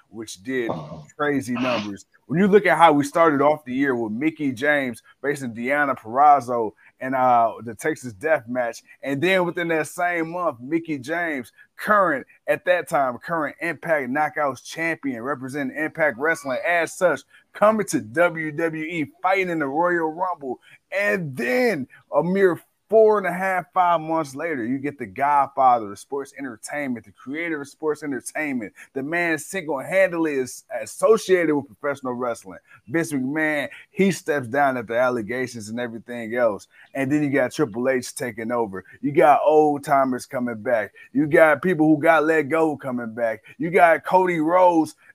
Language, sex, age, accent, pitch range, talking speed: English, male, 30-49, American, 130-175 Hz, 165 wpm